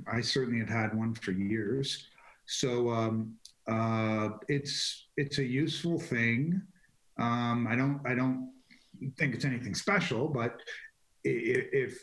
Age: 40-59